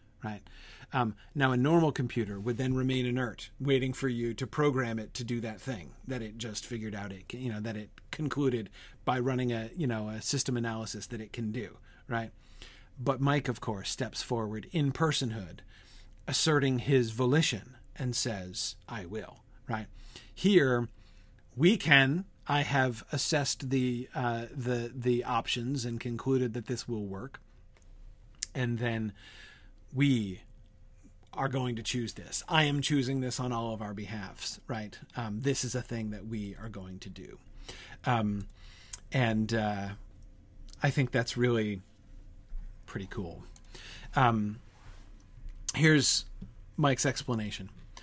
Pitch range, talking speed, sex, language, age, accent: 105-135 Hz, 150 wpm, male, English, 40-59, American